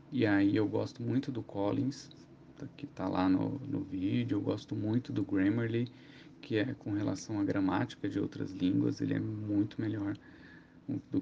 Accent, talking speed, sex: Brazilian, 170 wpm, male